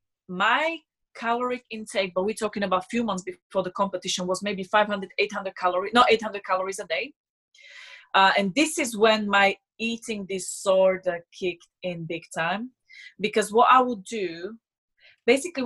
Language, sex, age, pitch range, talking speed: English, female, 20-39, 180-230 Hz, 155 wpm